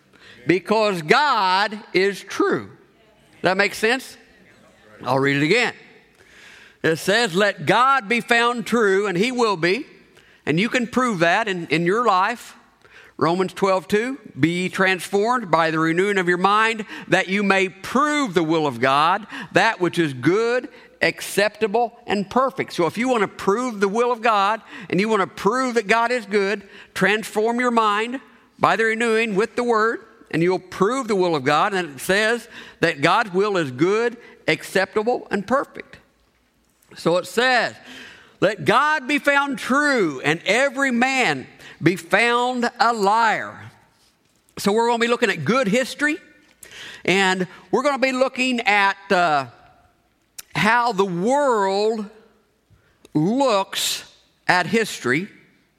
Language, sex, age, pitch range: English, male, 50-69, 185-240 Hz